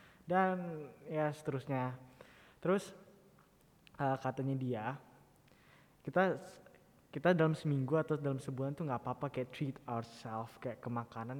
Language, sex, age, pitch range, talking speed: Indonesian, male, 20-39, 125-150 Hz, 115 wpm